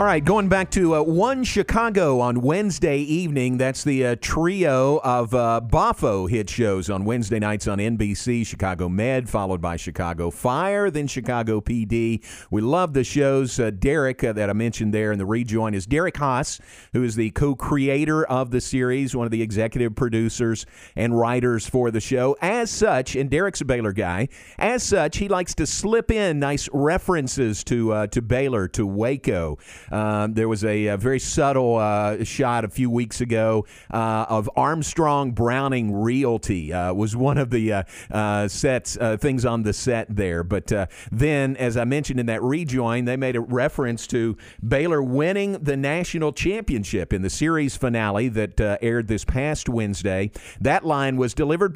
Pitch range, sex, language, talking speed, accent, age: 110-145 Hz, male, English, 180 wpm, American, 50-69